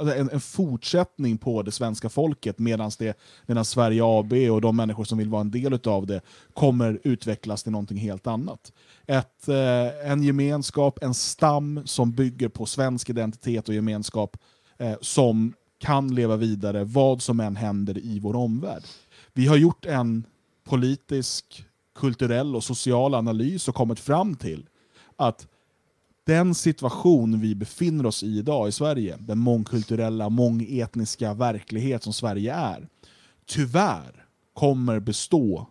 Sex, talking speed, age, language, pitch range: male, 140 wpm, 30-49, Swedish, 110-135 Hz